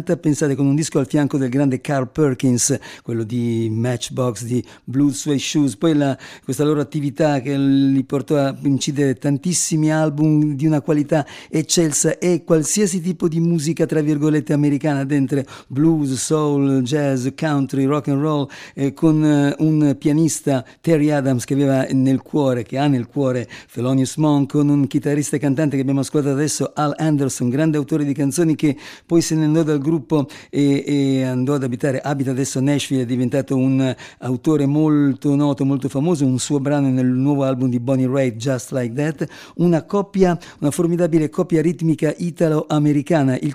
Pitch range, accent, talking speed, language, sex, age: 135-155 Hz, Italian, 170 wpm, English, male, 50-69